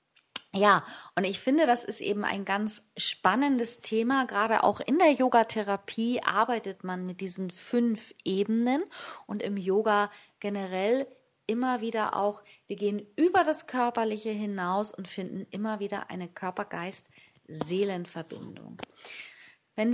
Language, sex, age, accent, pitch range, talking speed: German, female, 30-49, German, 190-235 Hz, 125 wpm